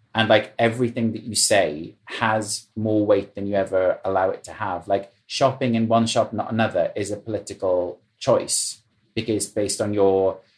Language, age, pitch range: English, 30-49, 100-115 Hz